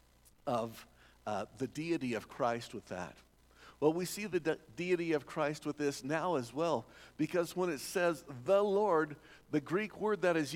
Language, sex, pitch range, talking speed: English, male, 130-170 Hz, 175 wpm